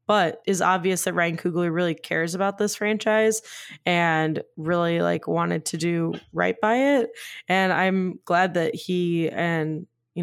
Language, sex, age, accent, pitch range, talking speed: English, female, 20-39, American, 160-195 Hz, 160 wpm